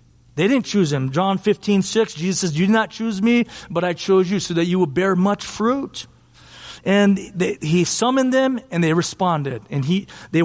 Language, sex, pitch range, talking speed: English, male, 150-205 Hz, 205 wpm